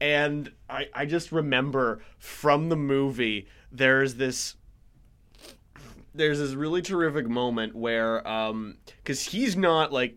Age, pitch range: 20-39, 120-180 Hz